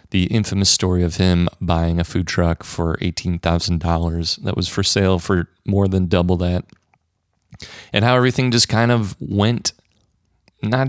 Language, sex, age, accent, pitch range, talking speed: English, male, 30-49, American, 90-105 Hz, 155 wpm